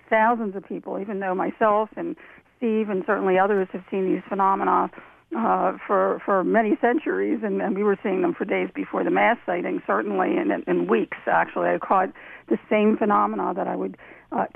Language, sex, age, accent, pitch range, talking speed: English, female, 50-69, American, 195-235 Hz, 190 wpm